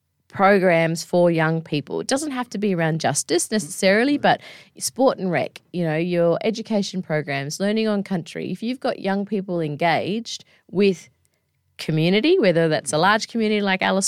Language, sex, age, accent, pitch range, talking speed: English, female, 20-39, Australian, 160-205 Hz, 165 wpm